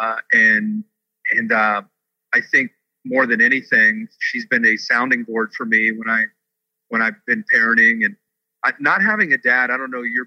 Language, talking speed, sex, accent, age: English, 180 wpm, male, American, 50-69